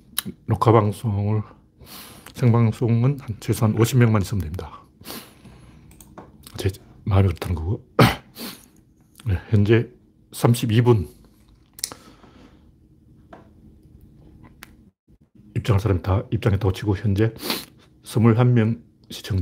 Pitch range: 100-125 Hz